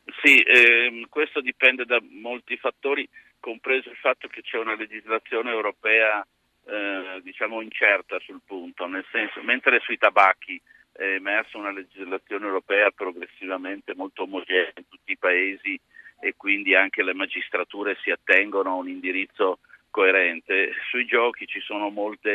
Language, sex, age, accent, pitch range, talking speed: Italian, male, 50-69, native, 100-130 Hz, 140 wpm